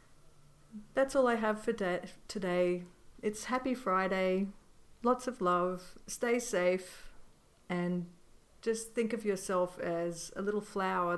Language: English